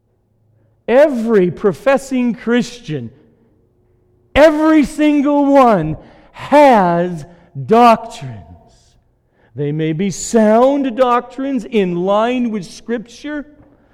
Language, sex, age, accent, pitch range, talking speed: English, male, 50-69, American, 120-185 Hz, 75 wpm